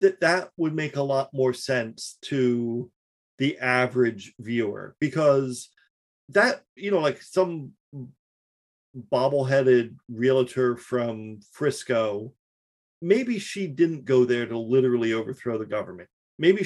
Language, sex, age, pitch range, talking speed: English, male, 40-59, 120-145 Hz, 120 wpm